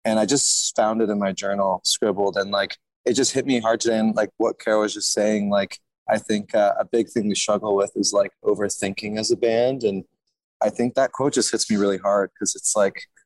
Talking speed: 240 wpm